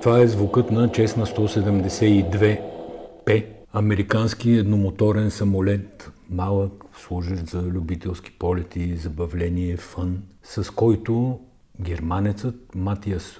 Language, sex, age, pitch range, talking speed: Bulgarian, male, 50-69, 80-100 Hz, 90 wpm